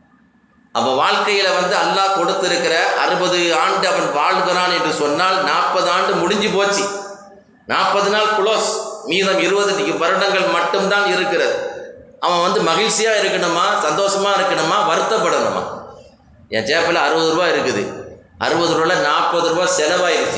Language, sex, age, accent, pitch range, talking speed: Tamil, male, 30-49, native, 160-210 Hz, 120 wpm